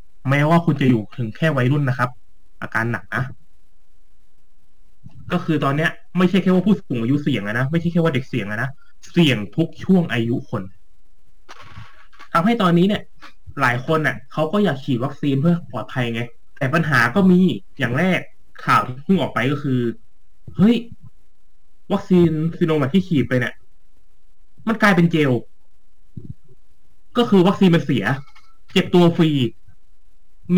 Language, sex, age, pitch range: Thai, male, 20-39, 120-175 Hz